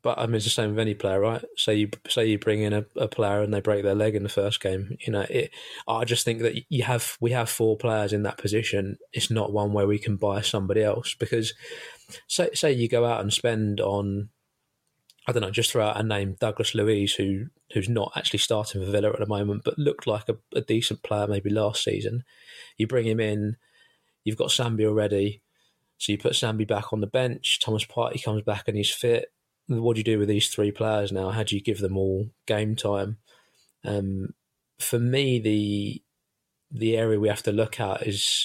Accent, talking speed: British, 225 wpm